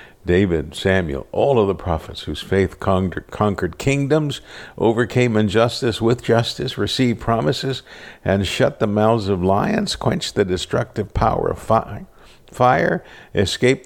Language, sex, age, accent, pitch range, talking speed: English, male, 60-79, American, 90-115 Hz, 125 wpm